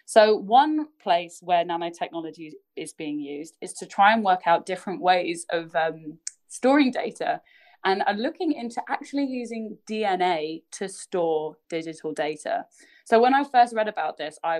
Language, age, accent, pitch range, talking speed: English, 20-39, British, 170-240 Hz, 160 wpm